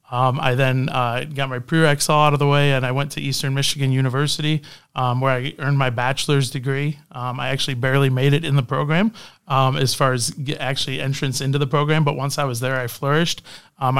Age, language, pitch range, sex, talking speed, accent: 30-49, English, 130-145 Hz, male, 225 wpm, American